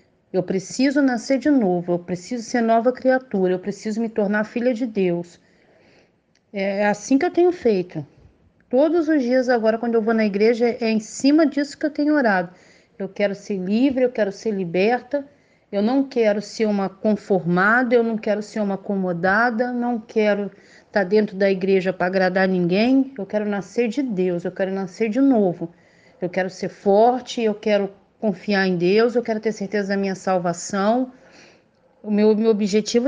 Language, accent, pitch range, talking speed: Portuguese, Brazilian, 190-240 Hz, 180 wpm